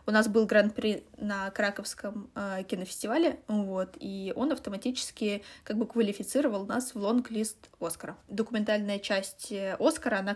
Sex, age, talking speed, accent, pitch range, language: female, 20-39, 125 wpm, native, 200-230 Hz, Russian